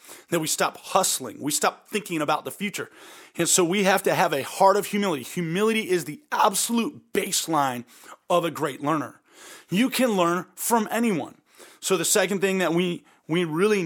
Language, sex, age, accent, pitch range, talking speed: English, male, 30-49, American, 170-210 Hz, 180 wpm